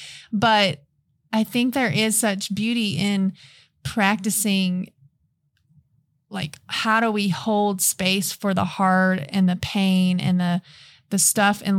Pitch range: 180-210 Hz